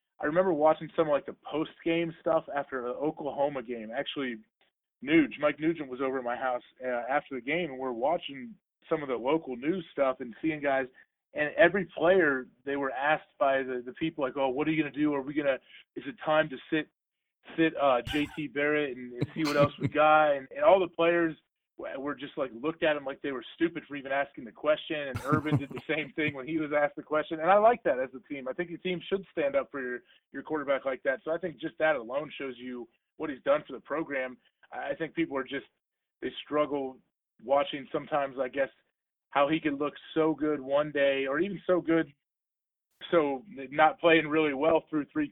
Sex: male